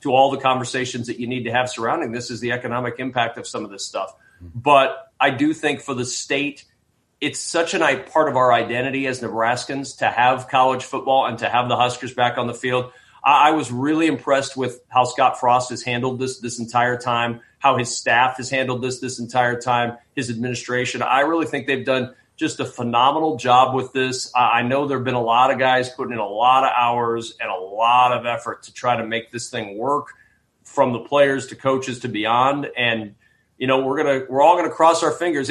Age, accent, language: 40-59, American, English